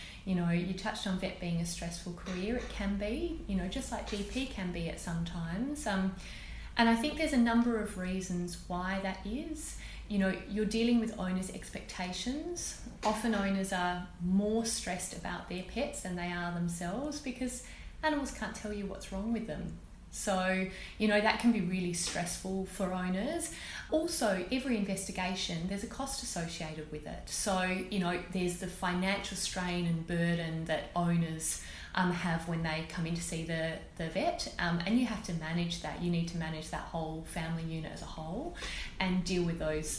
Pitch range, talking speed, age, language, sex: 170-210 Hz, 190 wpm, 30-49, English, female